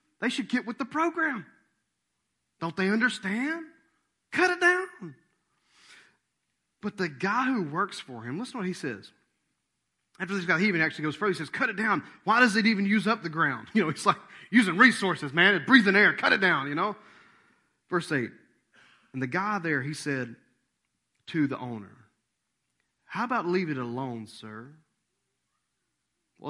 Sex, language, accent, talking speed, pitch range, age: male, English, American, 175 wpm, 125-210 Hz, 30-49